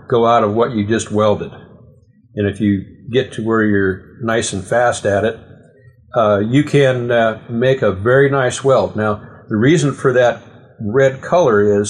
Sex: male